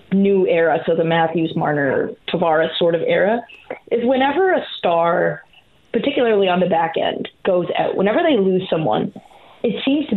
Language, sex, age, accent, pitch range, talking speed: English, female, 20-39, American, 175-215 Hz, 165 wpm